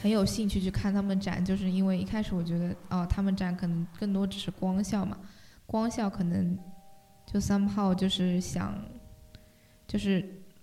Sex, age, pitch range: female, 10-29, 180-200 Hz